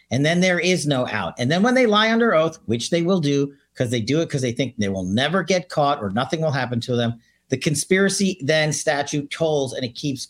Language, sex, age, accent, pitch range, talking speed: English, male, 50-69, American, 125-170 Hz, 250 wpm